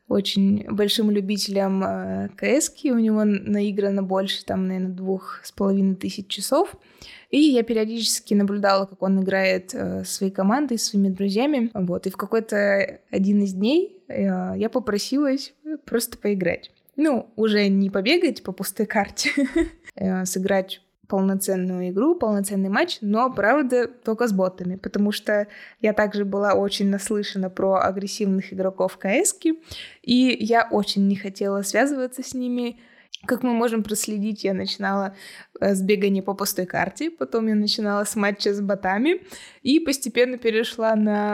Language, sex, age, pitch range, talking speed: Russian, female, 20-39, 195-235 Hz, 140 wpm